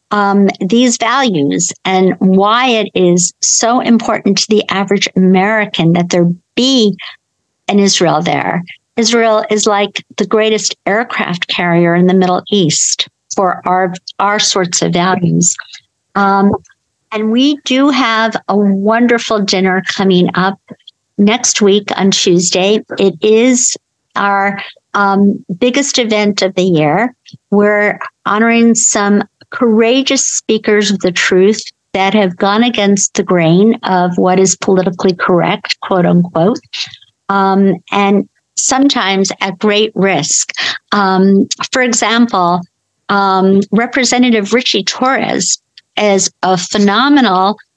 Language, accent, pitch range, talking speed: English, American, 190-225 Hz, 120 wpm